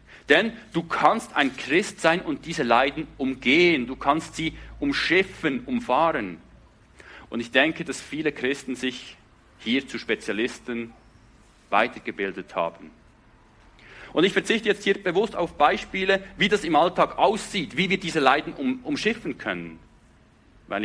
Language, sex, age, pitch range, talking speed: English, male, 40-59, 110-155 Hz, 135 wpm